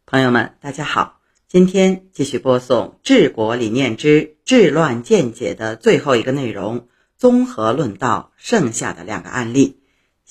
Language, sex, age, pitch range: Chinese, female, 50-69, 125-185 Hz